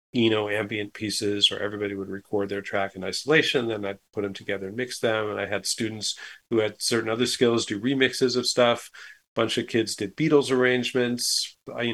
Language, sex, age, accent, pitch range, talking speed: English, male, 40-59, American, 100-120 Hz, 205 wpm